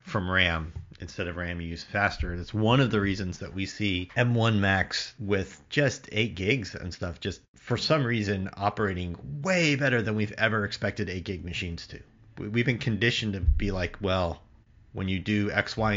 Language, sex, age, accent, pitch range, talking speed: English, male, 30-49, American, 90-110 Hz, 190 wpm